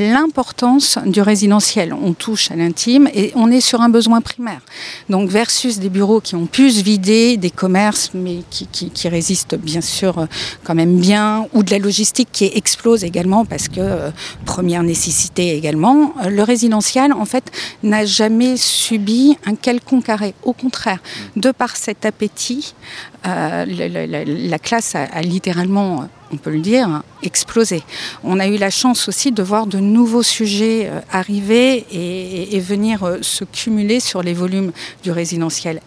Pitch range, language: 175-225 Hz, French